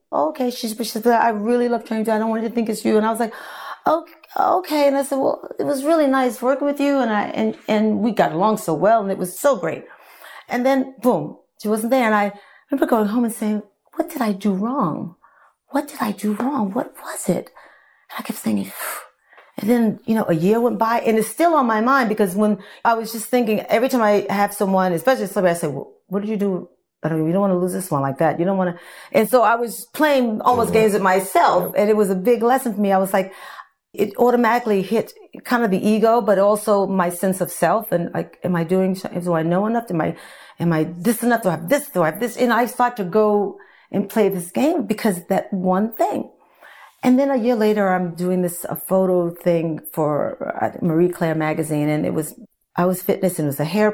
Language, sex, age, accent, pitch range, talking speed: English, female, 40-59, American, 185-240 Hz, 250 wpm